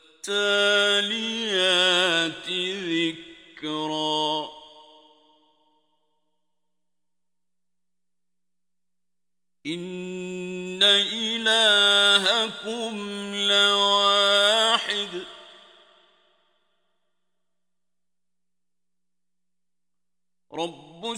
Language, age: Turkish, 50-69